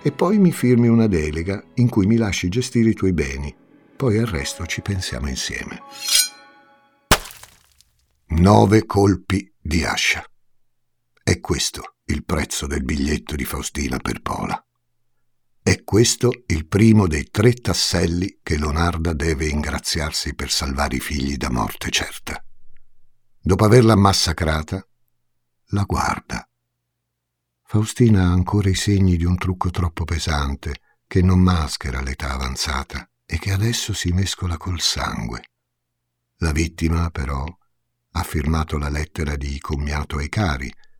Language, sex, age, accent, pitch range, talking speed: Italian, male, 60-79, native, 75-105 Hz, 130 wpm